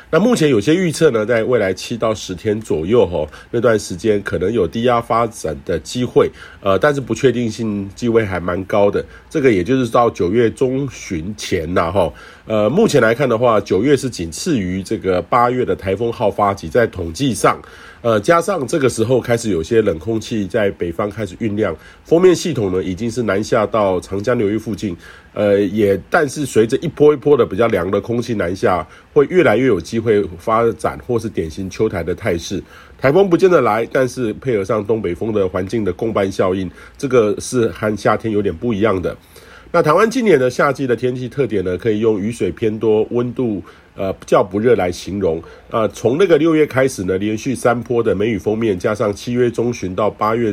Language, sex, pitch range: Chinese, male, 100-125 Hz